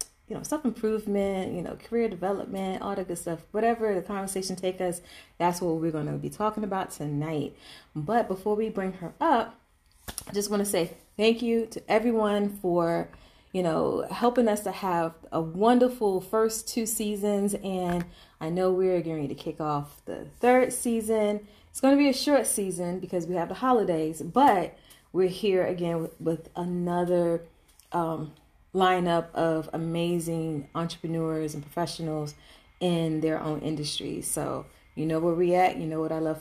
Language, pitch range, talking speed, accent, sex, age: English, 165-210 Hz, 170 wpm, American, female, 30-49